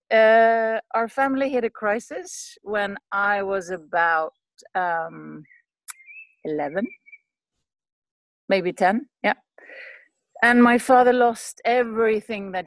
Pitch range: 185-245 Hz